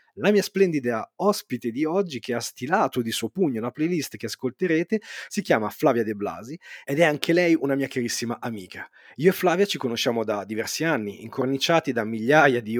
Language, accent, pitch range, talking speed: Italian, native, 125-175 Hz, 190 wpm